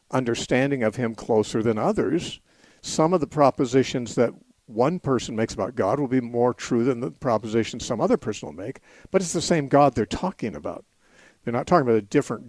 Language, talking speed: English, 200 wpm